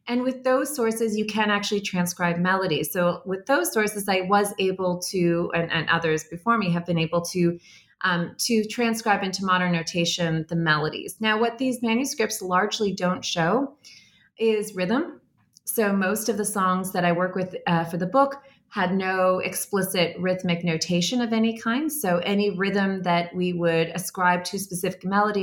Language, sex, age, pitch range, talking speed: English, female, 30-49, 170-215 Hz, 170 wpm